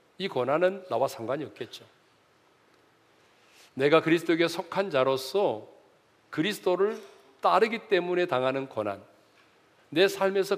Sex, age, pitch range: male, 40-59, 145-230 Hz